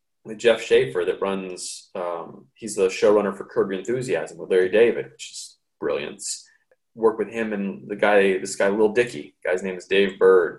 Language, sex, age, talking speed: English, male, 20-39, 195 wpm